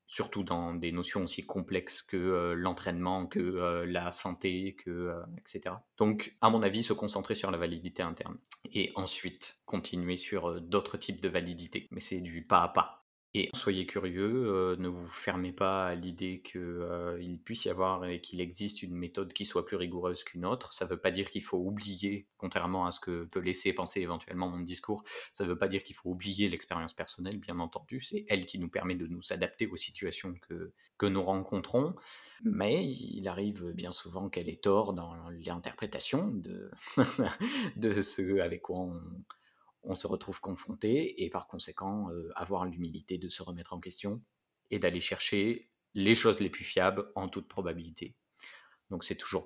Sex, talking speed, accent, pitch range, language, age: male, 185 wpm, French, 90-100 Hz, French, 20-39